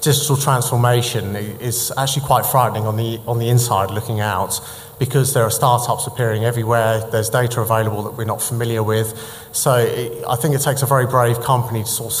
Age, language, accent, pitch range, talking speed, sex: 30-49, English, British, 110-130 Hz, 195 wpm, male